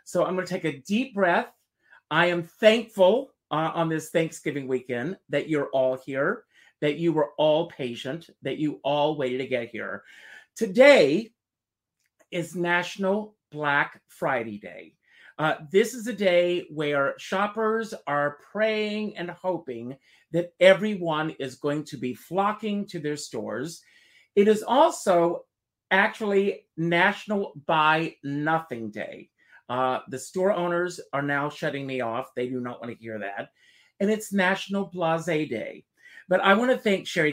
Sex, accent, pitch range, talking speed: male, American, 145-200 Hz, 150 wpm